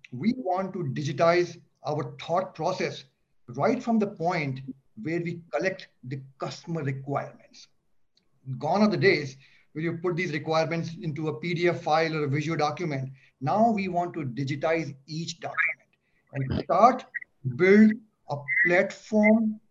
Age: 50-69